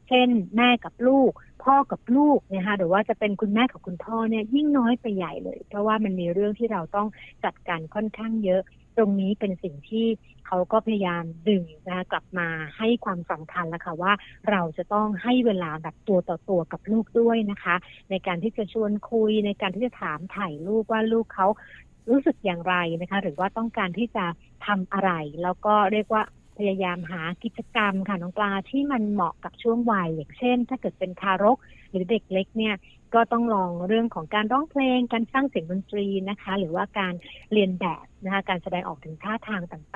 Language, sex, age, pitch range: Thai, female, 60-79, 185-225 Hz